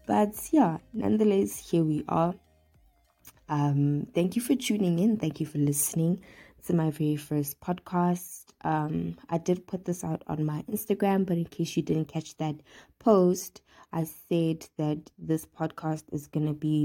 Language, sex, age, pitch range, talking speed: English, female, 20-39, 155-185 Hz, 165 wpm